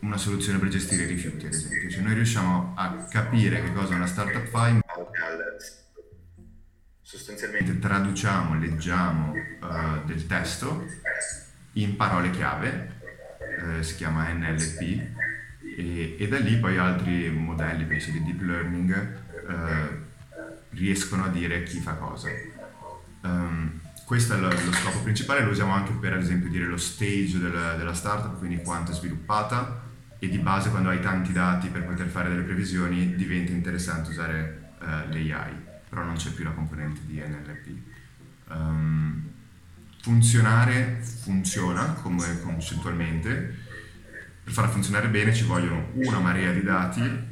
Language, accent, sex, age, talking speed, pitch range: Italian, native, male, 30-49, 145 wpm, 85-100 Hz